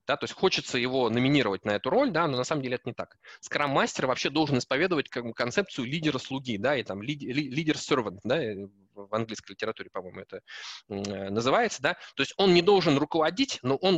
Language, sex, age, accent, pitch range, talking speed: Russian, male, 20-39, native, 110-155 Hz, 165 wpm